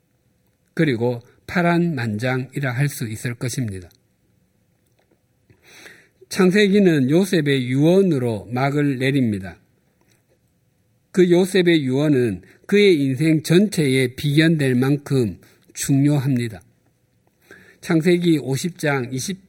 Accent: native